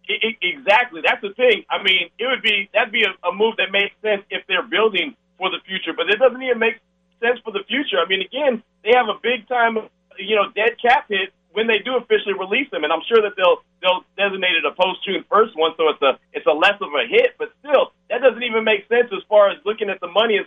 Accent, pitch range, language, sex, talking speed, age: American, 185-235 Hz, English, male, 260 wpm, 30-49